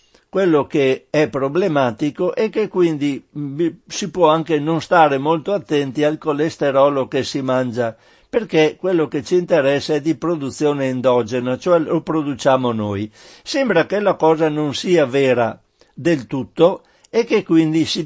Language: Italian